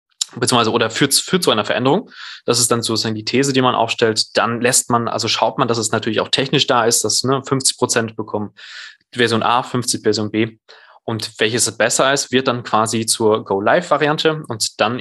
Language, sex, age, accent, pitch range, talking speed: German, male, 20-39, German, 110-130 Hz, 200 wpm